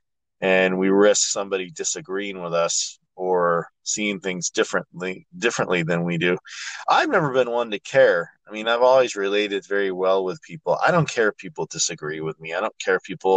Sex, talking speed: male, 195 wpm